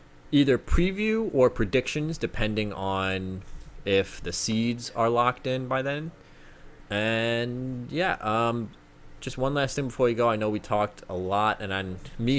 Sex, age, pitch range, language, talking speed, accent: male, 20-39, 90-115 Hz, English, 155 wpm, American